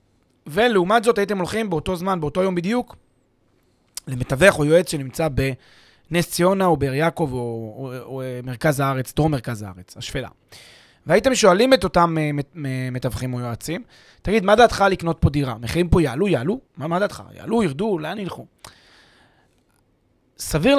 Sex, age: male, 30-49